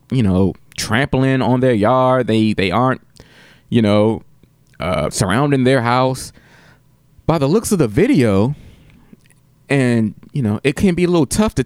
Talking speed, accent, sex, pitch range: 160 wpm, American, male, 100-140 Hz